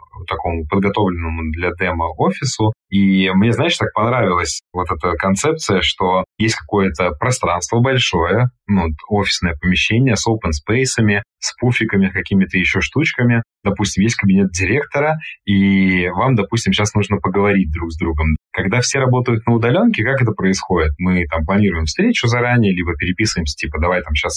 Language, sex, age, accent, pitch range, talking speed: Russian, male, 20-39, native, 95-120 Hz, 150 wpm